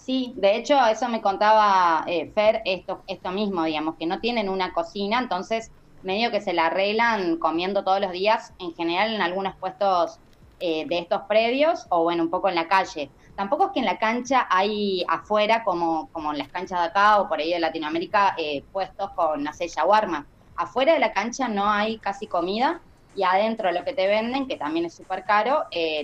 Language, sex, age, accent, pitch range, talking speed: Spanish, female, 20-39, Argentinian, 165-210 Hz, 205 wpm